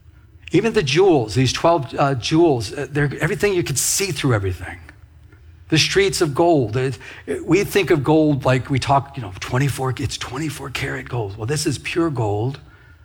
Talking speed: 180 wpm